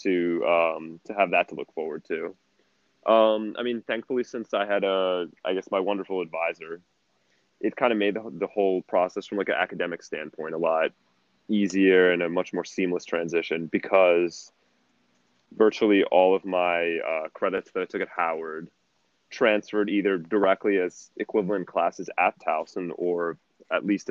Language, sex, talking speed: English, male, 165 wpm